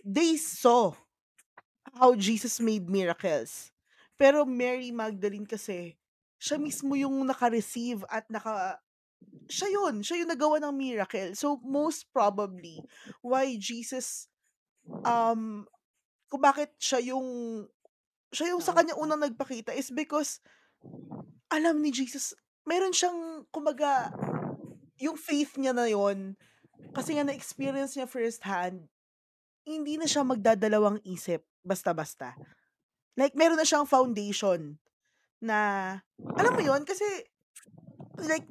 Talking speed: 115 wpm